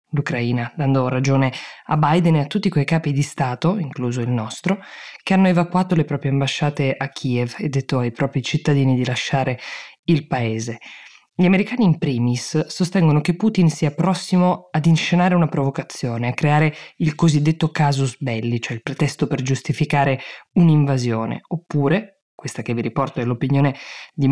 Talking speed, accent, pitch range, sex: 160 wpm, native, 135-165 Hz, female